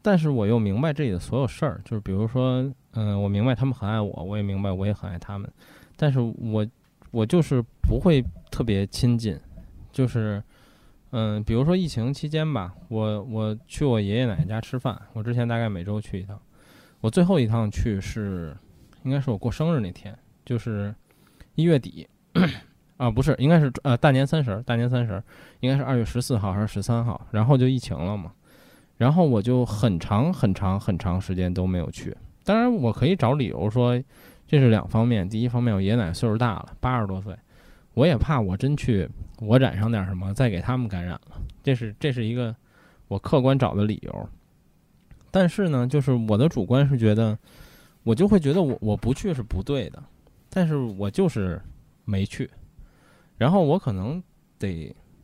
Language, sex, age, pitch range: Chinese, male, 20-39, 100-130 Hz